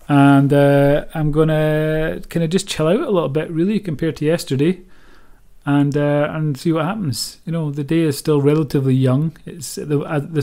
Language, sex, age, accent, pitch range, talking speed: English, male, 30-49, British, 125-160 Hz, 190 wpm